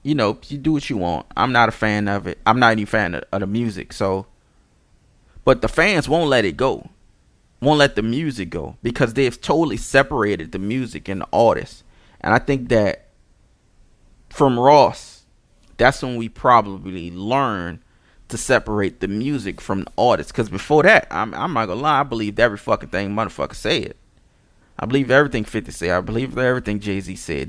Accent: American